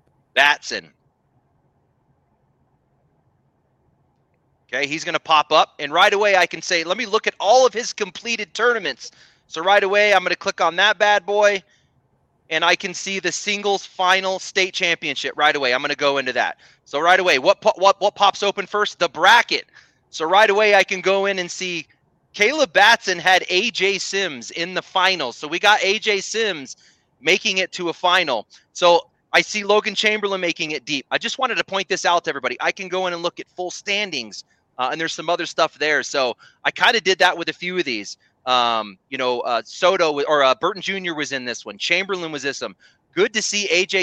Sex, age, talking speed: male, 30-49, 210 wpm